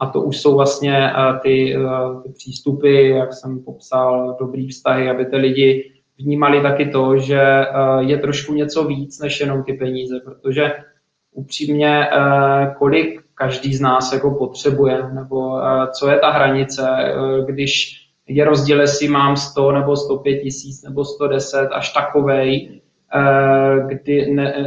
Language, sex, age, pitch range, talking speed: Czech, male, 20-39, 135-145 Hz, 135 wpm